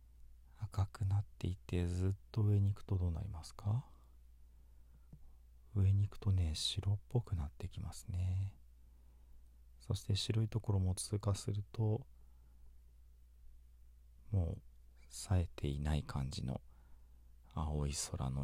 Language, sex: Japanese, male